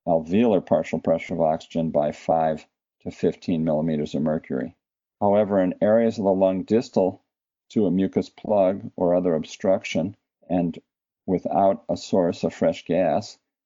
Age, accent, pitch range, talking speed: 50-69, American, 80-95 Hz, 145 wpm